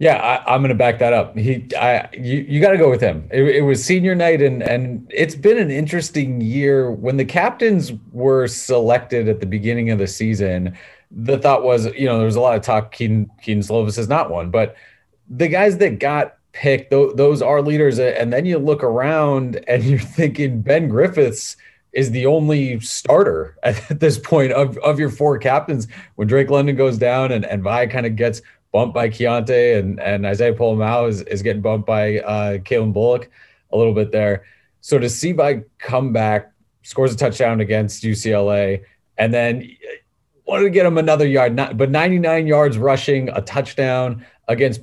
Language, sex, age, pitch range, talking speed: English, male, 30-49, 110-140 Hz, 200 wpm